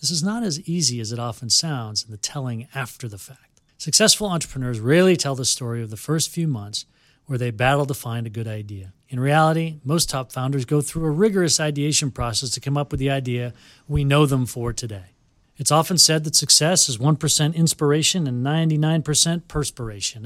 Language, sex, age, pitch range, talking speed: English, male, 40-59, 120-160 Hz, 200 wpm